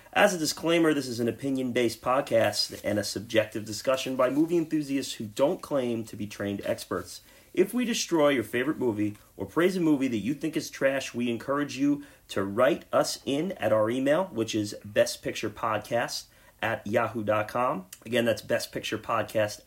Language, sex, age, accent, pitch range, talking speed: English, male, 30-49, American, 110-145 Hz, 170 wpm